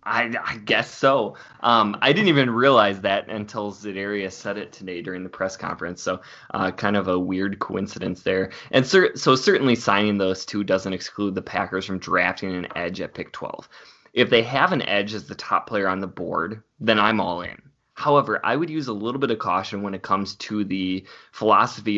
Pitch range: 100-120 Hz